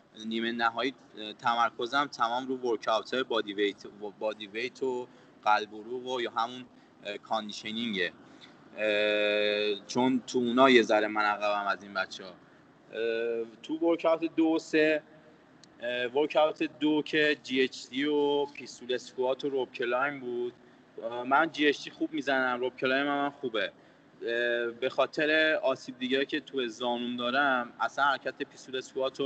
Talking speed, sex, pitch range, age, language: 135 wpm, male, 110-140 Hz, 20-39, Persian